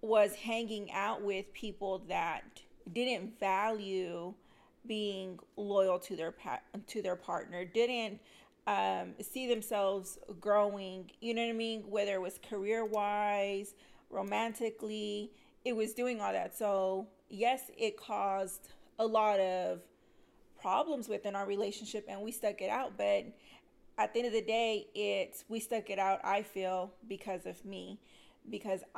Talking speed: 145 wpm